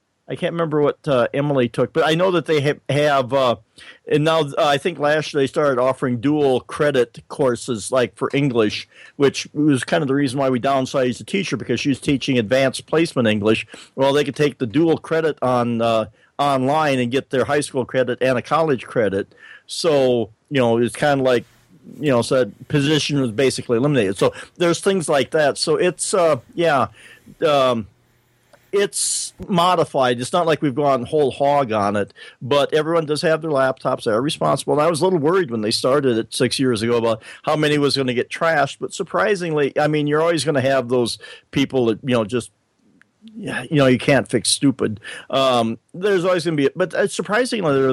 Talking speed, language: 205 wpm, English